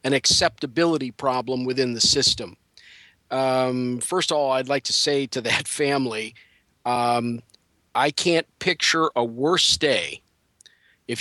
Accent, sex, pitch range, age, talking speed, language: American, male, 125-165 Hz, 50-69, 135 wpm, English